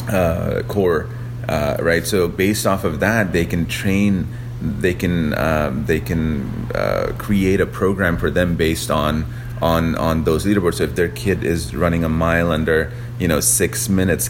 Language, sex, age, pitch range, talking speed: English, male, 30-49, 80-110 Hz, 175 wpm